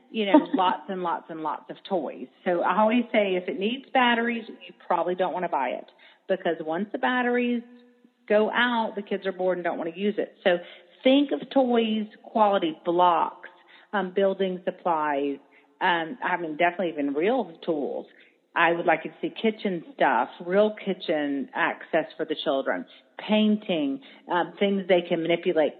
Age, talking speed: 40-59, 175 wpm